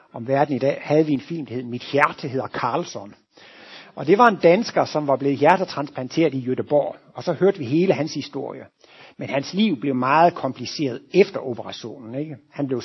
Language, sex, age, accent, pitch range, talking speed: Danish, male, 60-79, native, 130-170 Hz, 195 wpm